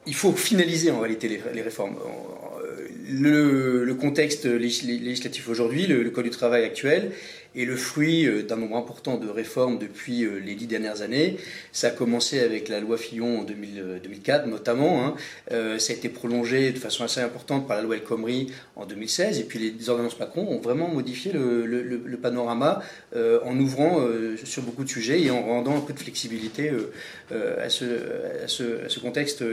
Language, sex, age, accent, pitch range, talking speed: French, male, 30-49, French, 120-160 Hz, 180 wpm